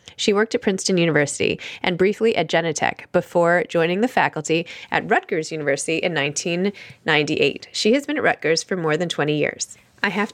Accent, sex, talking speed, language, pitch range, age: American, female, 175 wpm, English, 165-215 Hz, 20-39